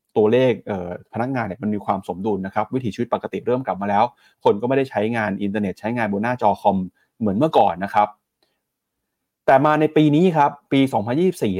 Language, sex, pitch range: Thai, male, 110-145 Hz